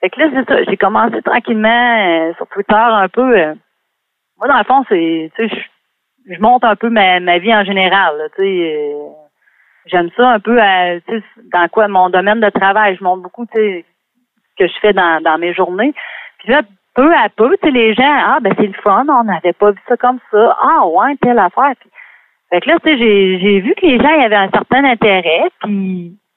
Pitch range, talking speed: 185-245 Hz, 230 wpm